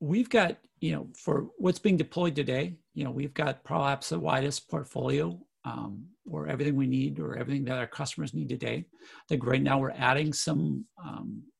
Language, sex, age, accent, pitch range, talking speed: English, male, 50-69, American, 135-165 Hz, 190 wpm